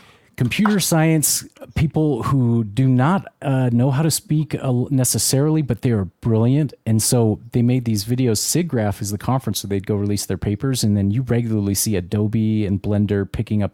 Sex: male